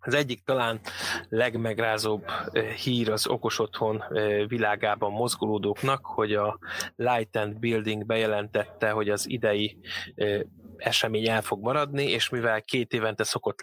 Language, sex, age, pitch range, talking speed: Hungarian, male, 20-39, 105-120 Hz, 125 wpm